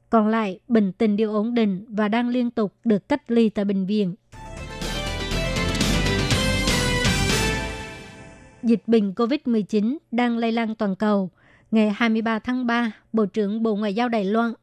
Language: Vietnamese